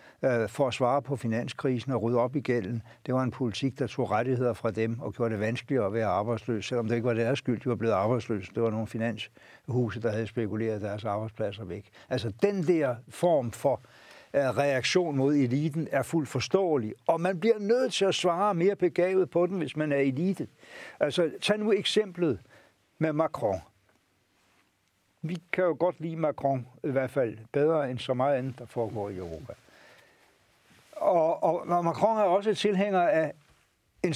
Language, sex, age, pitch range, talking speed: Danish, male, 60-79, 120-180 Hz, 185 wpm